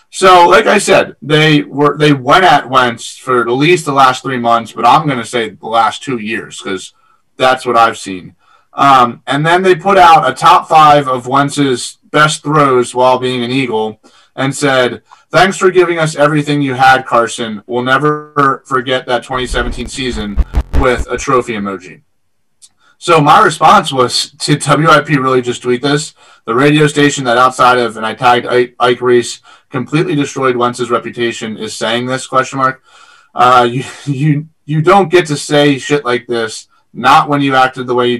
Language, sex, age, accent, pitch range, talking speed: English, male, 30-49, American, 120-150 Hz, 185 wpm